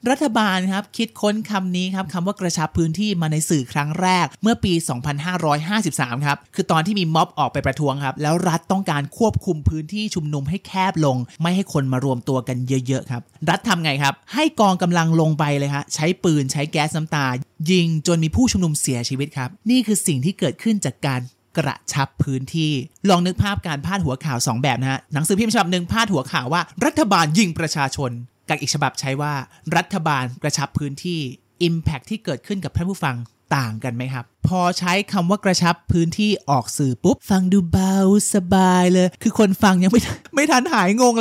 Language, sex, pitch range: Thai, male, 145-195 Hz